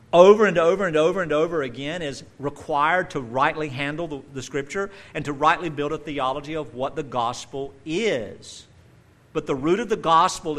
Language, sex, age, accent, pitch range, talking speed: English, male, 50-69, American, 120-155 Hz, 185 wpm